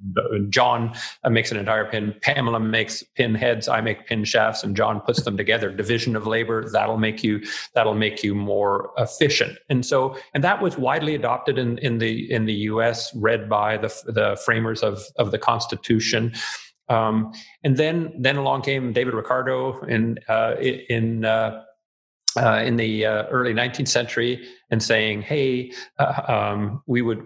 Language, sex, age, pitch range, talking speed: English, male, 40-59, 110-120 Hz, 170 wpm